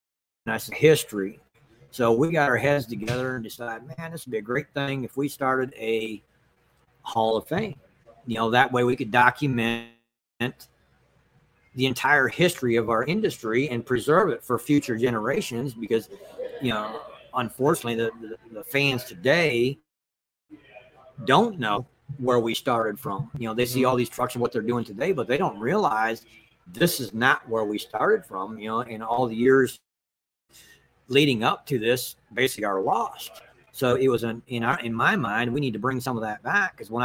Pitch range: 110-130 Hz